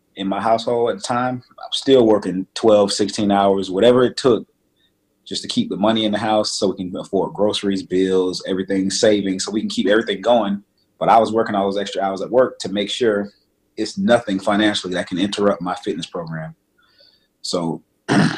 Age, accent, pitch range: 30-49, American, 95-115 Hz